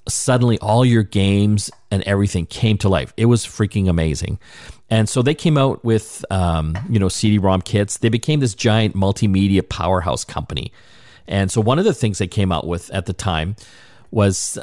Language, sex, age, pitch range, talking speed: English, male, 40-59, 95-125 Hz, 185 wpm